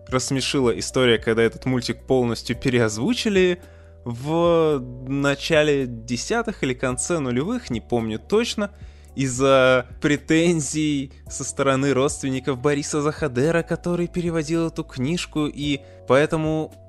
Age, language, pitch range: 20-39, Russian, 110-150 Hz